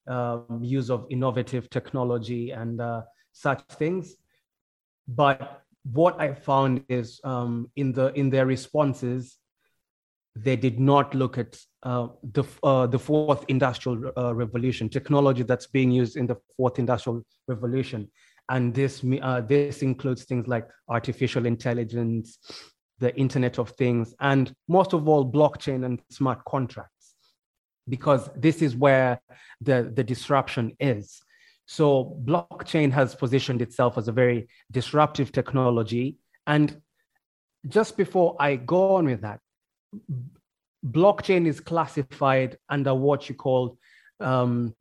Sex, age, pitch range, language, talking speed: male, 20-39, 120-140 Hz, English, 130 wpm